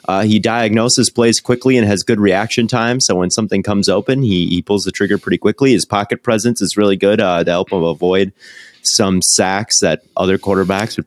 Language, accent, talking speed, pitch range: English, American, 210 wpm, 90-110 Hz